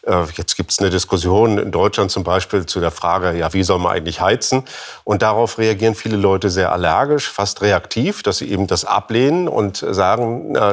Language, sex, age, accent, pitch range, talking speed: German, male, 40-59, German, 100-125 Hz, 195 wpm